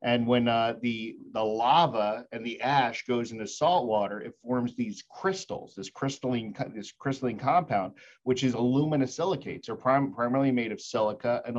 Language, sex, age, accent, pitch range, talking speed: English, male, 40-59, American, 115-135 Hz, 170 wpm